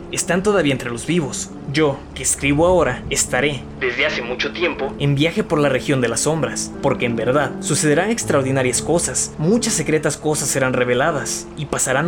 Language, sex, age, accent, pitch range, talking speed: Spanish, male, 20-39, Mexican, 135-170 Hz, 175 wpm